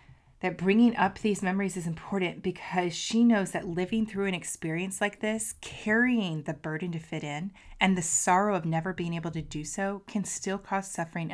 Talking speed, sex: 195 wpm, female